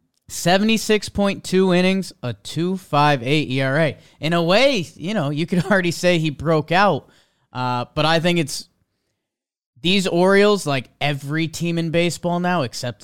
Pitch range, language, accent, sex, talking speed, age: 125-155 Hz, English, American, male, 145 wpm, 30-49